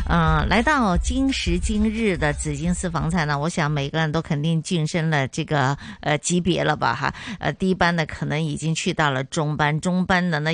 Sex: female